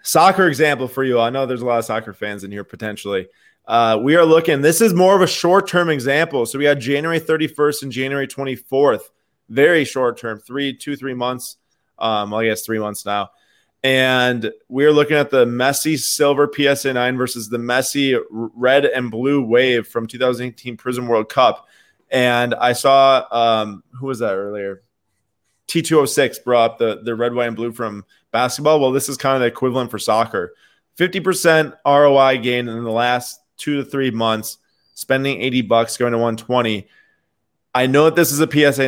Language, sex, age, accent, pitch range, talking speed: English, male, 20-39, American, 115-140 Hz, 180 wpm